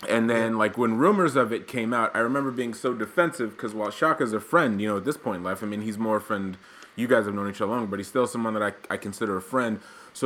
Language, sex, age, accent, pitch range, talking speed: English, male, 30-49, American, 100-125 Hz, 290 wpm